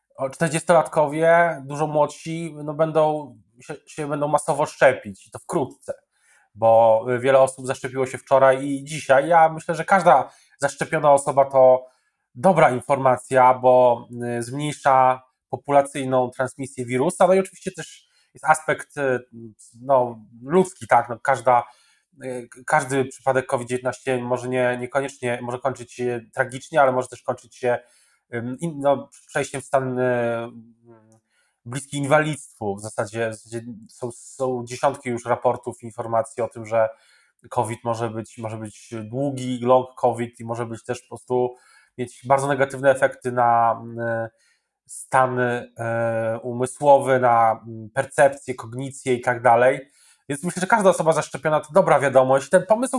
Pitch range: 120-145 Hz